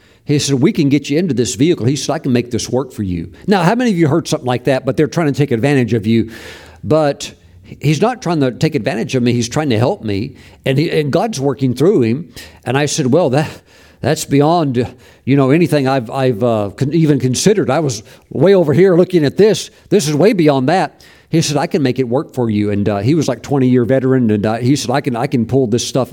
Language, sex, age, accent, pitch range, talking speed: English, male, 50-69, American, 115-150 Hz, 255 wpm